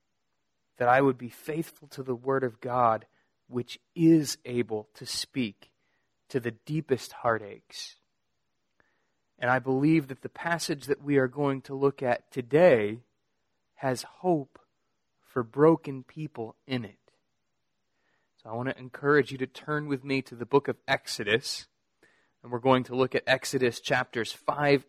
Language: English